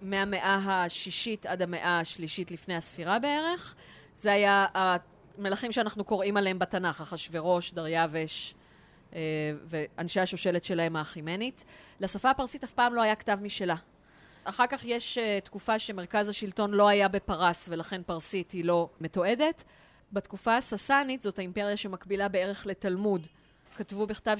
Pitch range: 180-220 Hz